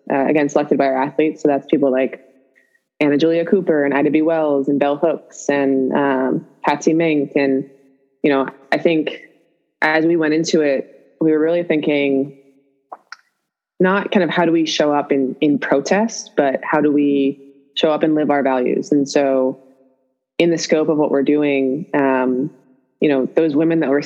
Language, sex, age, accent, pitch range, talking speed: English, female, 20-39, American, 135-155 Hz, 185 wpm